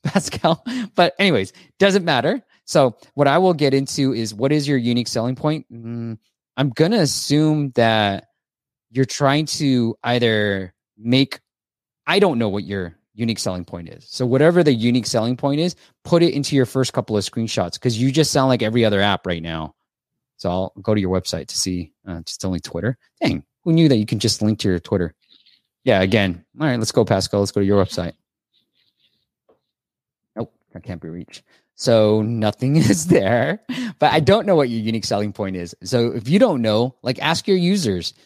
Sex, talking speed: male, 195 wpm